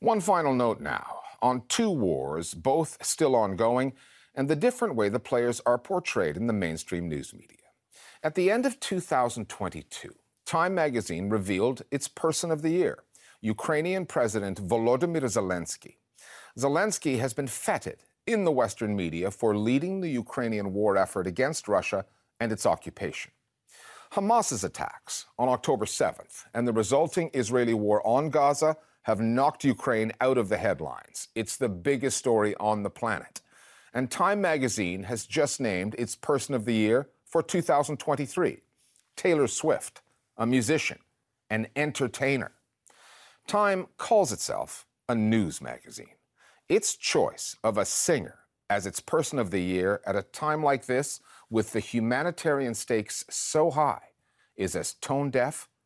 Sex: male